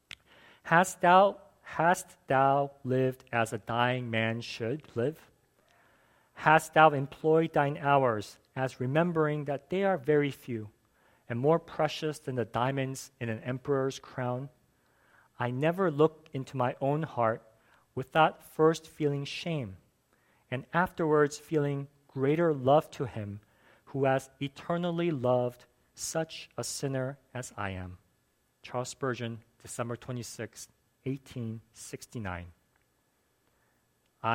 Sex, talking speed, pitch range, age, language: male, 115 wpm, 115-150 Hz, 40-59, English